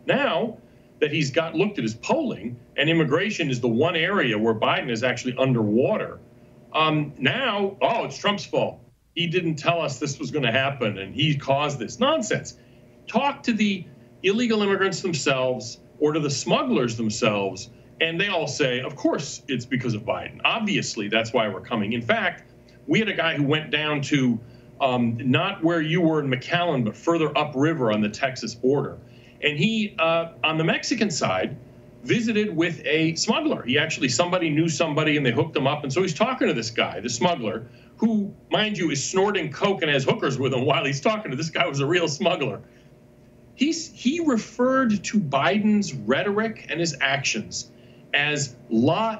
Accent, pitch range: American, 125-190 Hz